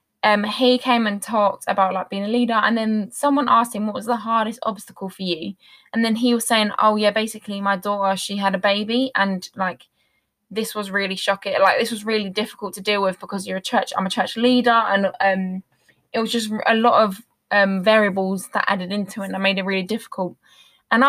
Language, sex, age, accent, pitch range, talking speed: English, female, 10-29, British, 195-235 Hz, 220 wpm